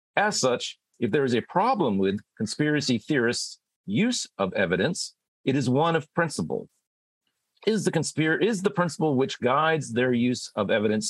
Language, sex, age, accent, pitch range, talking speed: English, male, 40-59, American, 95-130 Hz, 160 wpm